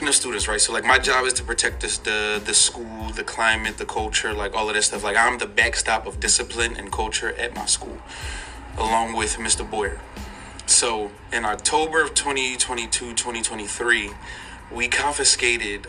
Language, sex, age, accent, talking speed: English, male, 20-39, American, 170 wpm